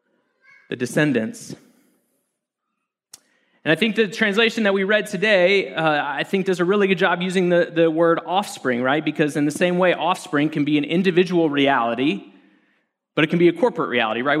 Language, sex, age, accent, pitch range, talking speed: English, male, 30-49, American, 150-210 Hz, 185 wpm